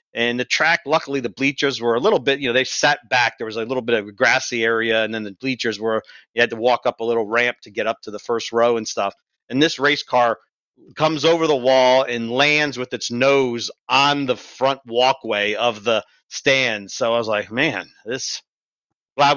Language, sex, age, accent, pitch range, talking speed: English, male, 40-59, American, 115-140 Hz, 225 wpm